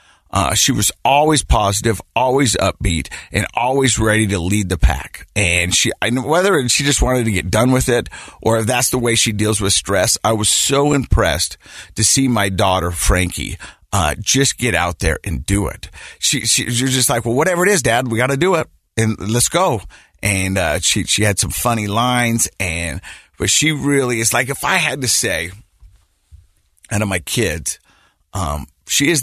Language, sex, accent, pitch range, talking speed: English, male, American, 85-120 Hz, 200 wpm